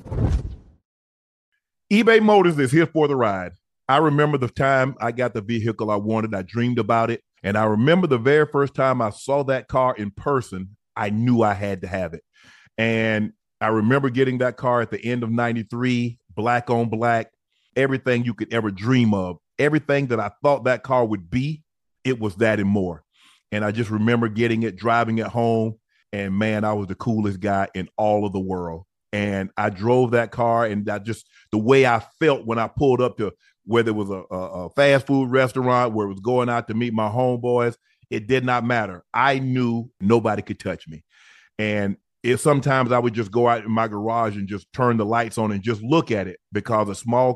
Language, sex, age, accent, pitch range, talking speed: English, male, 40-59, American, 105-125 Hz, 210 wpm